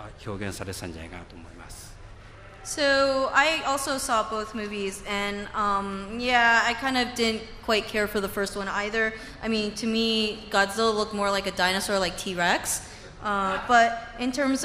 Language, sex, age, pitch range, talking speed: English, female, 20-39, 210-255 Hz, 145 wpm